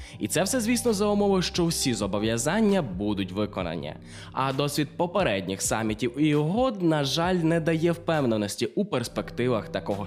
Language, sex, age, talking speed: Ukrainian, male, 20-39, 150 wpm